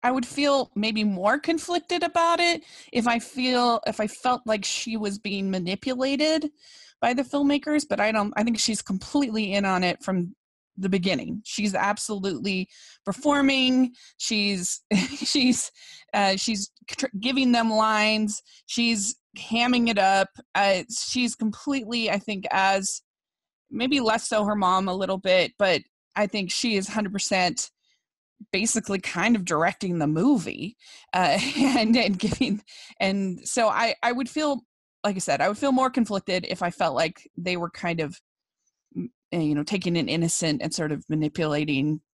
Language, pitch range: English, 190-255 Hz